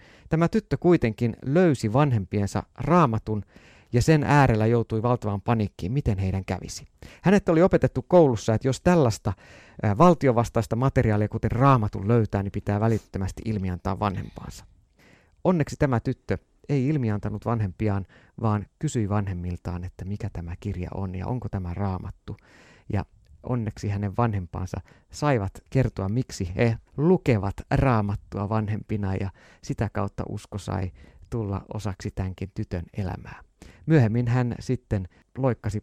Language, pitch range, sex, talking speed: Finnish, 95-125 Hz, male, 125 wpm